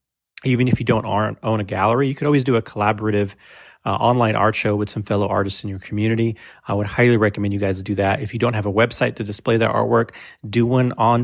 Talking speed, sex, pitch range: 240 wpm, male, 100-115 Hz